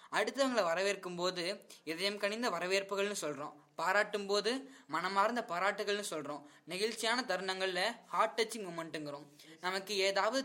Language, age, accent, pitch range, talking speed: Tamil, 20-39, native, 165-210 Hz, 110 wpm